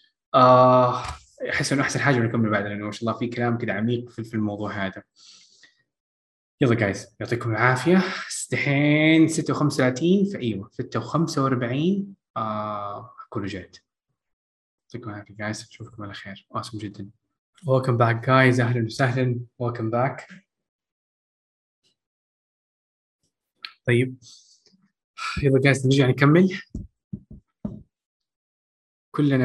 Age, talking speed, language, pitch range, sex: 20-39, 100 wpm, Arabic, 115-145 Hz, male